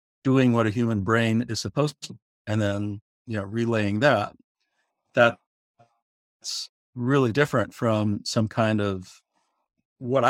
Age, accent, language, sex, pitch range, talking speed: 50-69, American, English, male, 105-125 Hz, 130 wpm